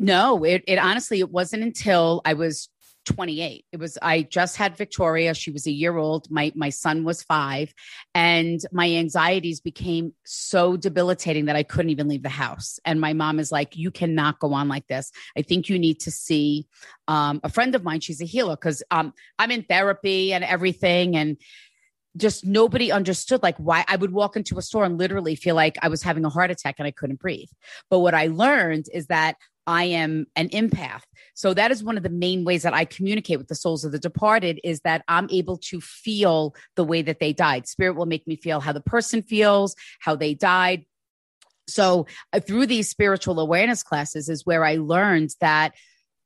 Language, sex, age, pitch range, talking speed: English, female, 30-49, 155-185 Hz, 205 wpm